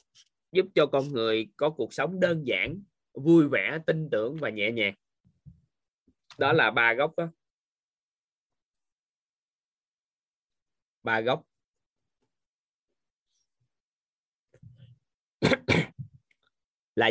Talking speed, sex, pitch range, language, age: 80 wpm, male, 110-145 Hz, Vietnamese, 20-39